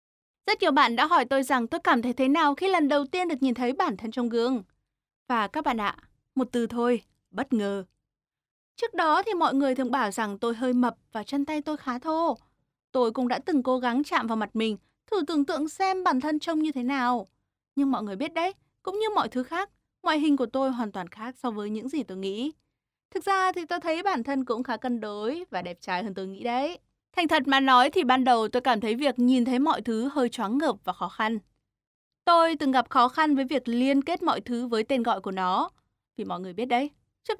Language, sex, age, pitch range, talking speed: Vietnamese, female, 20-39, 235-310 Hz, 245 wpm